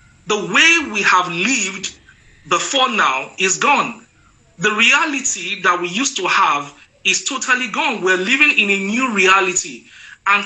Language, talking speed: English, 150 wpm